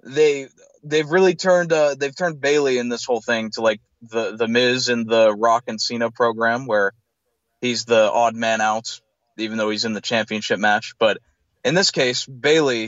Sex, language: male, English